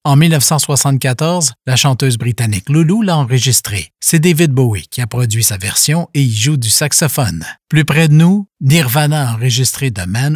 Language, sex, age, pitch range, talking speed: French, male, 50-69, 125-160 Hz, 175 wpm